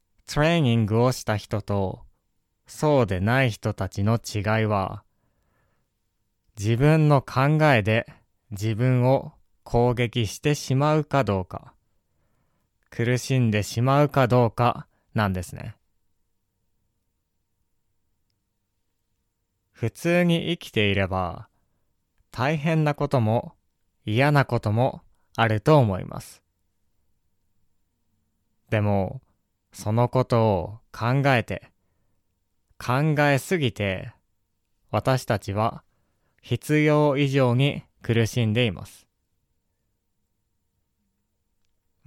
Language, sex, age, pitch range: Japanese, male, 20-39, 95-125 Hz